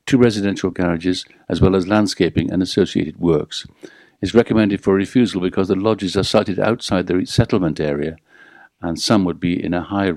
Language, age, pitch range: English, 50-69, 85-100 Hz